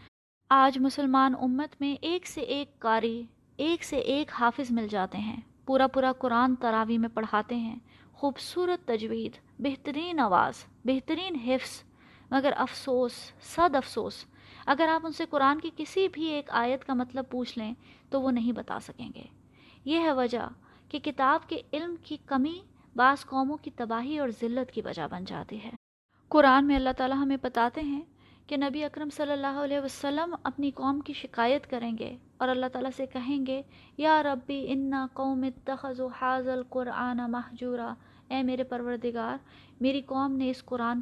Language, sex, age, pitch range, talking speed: Urdu, female, 20-39, 235-275 Hz, 165 wpm